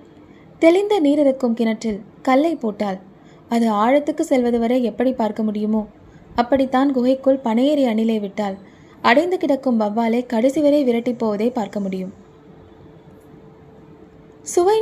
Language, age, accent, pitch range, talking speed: Tamil, 20-39, native, 215-275 Hz, 105 wpm